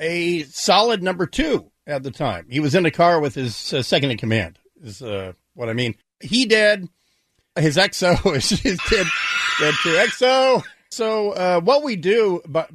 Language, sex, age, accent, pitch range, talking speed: English, male, 50-69, American, 135-180 Hz, 180 wpm